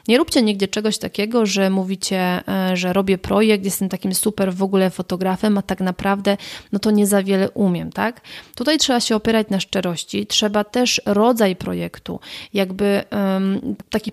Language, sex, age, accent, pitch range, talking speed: Polish, female, 30-49, native, 195-225 Hz, 160 wpm